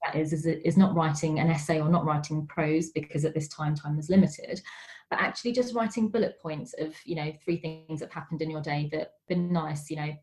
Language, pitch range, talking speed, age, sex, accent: English, 160-190 Hz, 235 wpm, 20-39, female, British